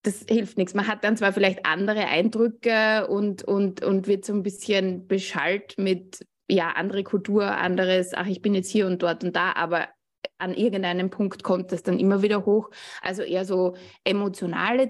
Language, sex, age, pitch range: German, female, 20-39, 180-210 Hz